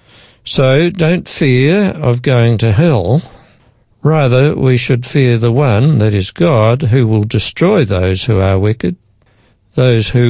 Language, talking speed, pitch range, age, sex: English, 145 wpm, 105-135 Hz, 60-79, male